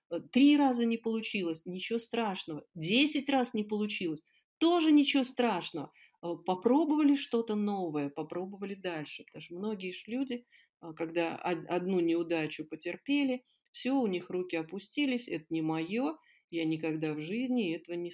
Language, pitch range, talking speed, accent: Russian, 165-250 Hz, 130 wpm, native